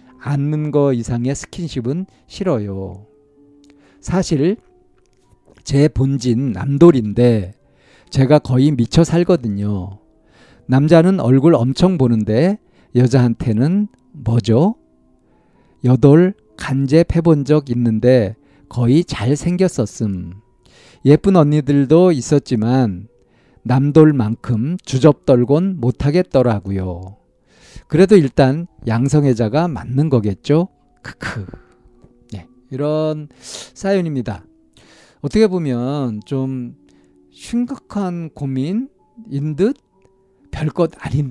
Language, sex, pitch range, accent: Korean, male, 120-155 Hz, native